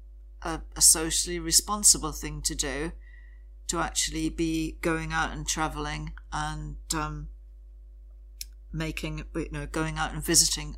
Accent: British